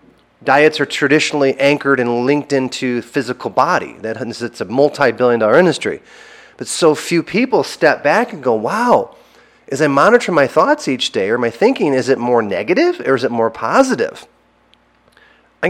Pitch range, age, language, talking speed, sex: 130-170 Hz, 30-49, English, 170 wpm, male